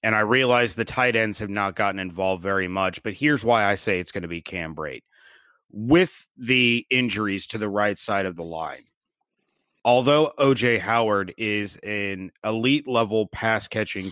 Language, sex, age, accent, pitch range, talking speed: English, male, 30-49, American, 105-130 Hz, 170 wpm